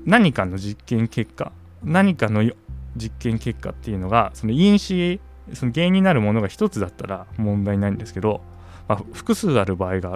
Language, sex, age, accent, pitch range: Japanese, male, 20-39, native, 85-130 Hz